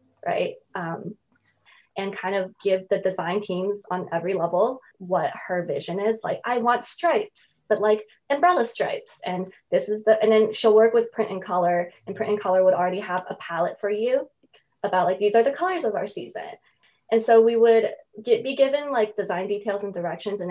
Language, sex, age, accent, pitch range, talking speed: English, female, 20-39, American, 185-230 Hz, 200 wpm